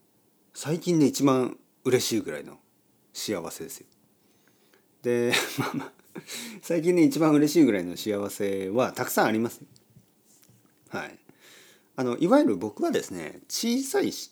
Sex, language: male, Japanese